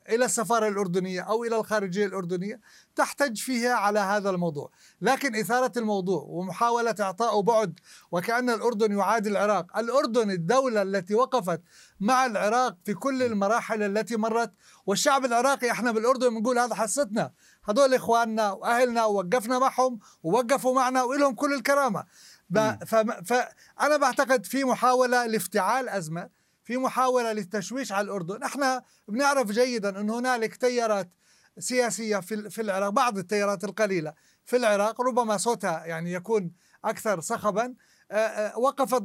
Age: 30-49